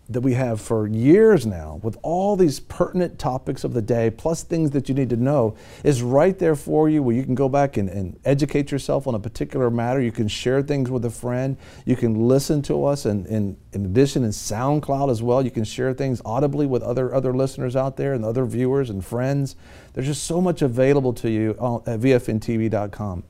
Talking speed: 215 wpm